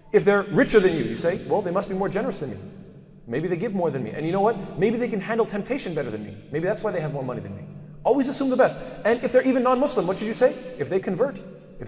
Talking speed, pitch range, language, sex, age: 300 wpm, 155-205 Hz, English, male, 30-49